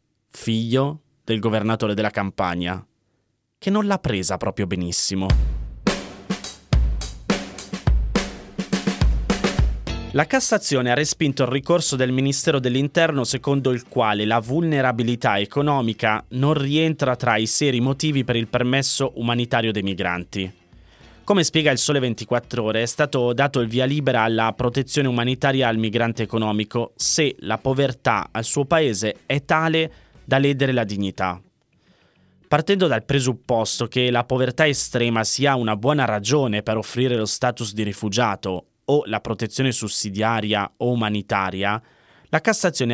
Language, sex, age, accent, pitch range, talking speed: Italian, male, 20-39, native, 110-140 Hz, 130 wpm